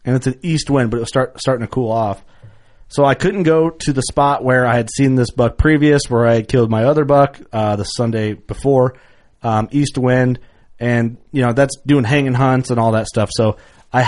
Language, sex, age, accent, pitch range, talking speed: English, male, 30-49, American, 110-140 Hz, 230 wpm